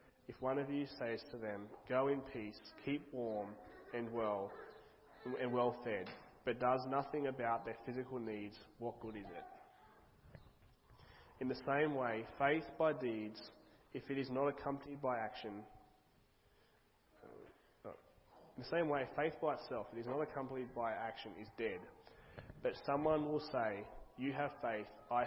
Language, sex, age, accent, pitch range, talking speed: English, male, 20-39, Australian, 110-135 Hz, 155 wpm